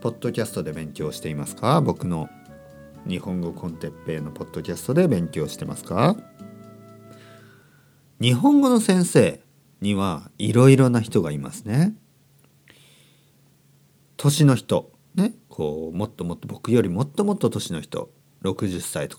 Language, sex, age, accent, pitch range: Japanese, male, 50-69, native, 95-155 Hz